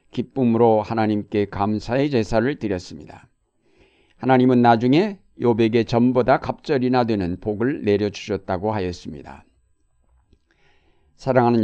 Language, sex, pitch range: Korean, male, 105-130 Hz